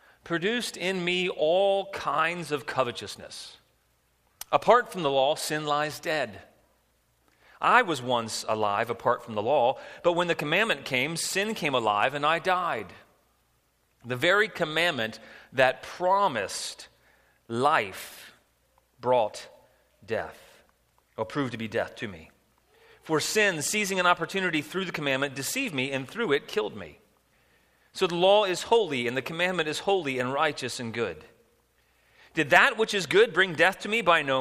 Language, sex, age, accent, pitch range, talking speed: English, male, 40-59, American, 125-195 Hz, 155 wpm